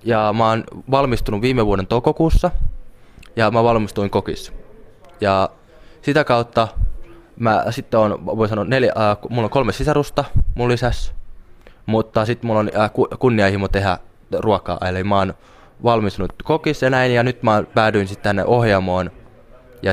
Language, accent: Finnish, native